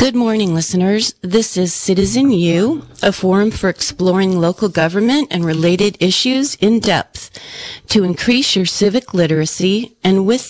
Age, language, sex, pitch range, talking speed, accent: 40-59, English, female, 165-215 Hz, 145 wpm, American